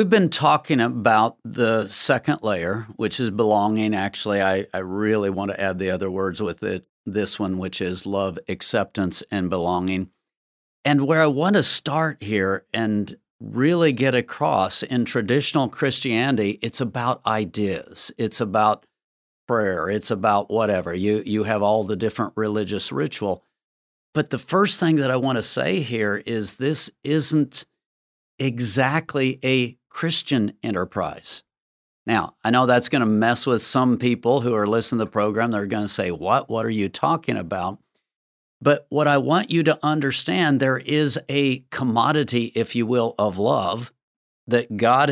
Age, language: 50-69, English